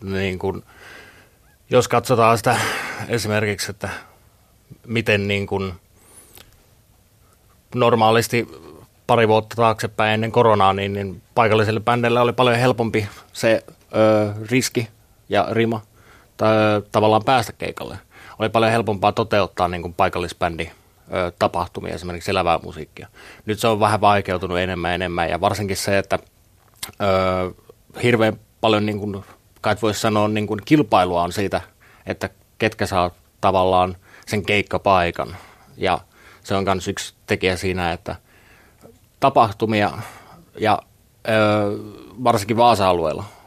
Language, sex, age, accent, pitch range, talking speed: Finnish, male, 30-49, native, 95-115 Hz, 115 wpm